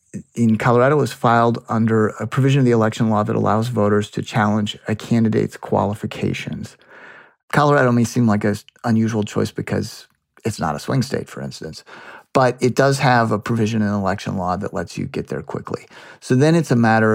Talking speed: 190 wpm